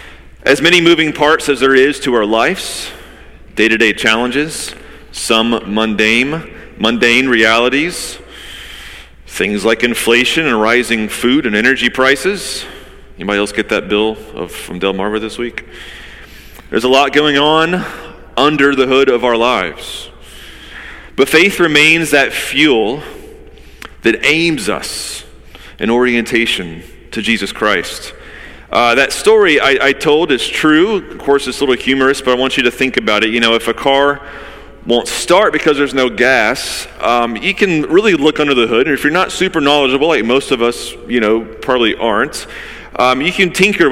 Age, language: 30-49, English